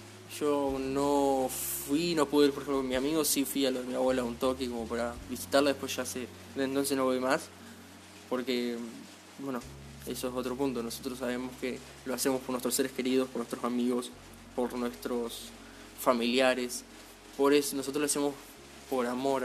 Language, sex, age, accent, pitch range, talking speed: Spanish, male, 20-39, Argentinian, 125-150 Hz, 180 wpm